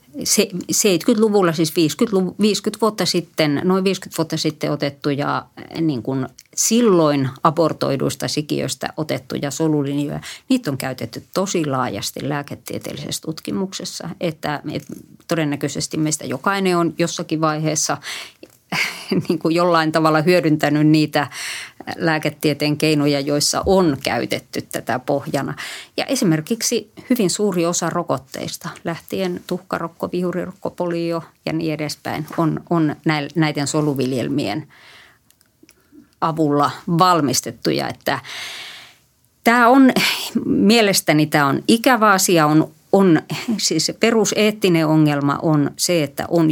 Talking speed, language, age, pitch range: 95 wpm, Finnish, 30-49, 150-190 Hz